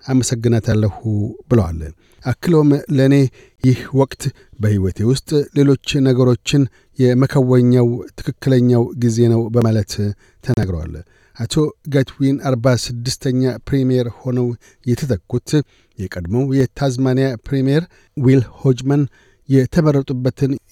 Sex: male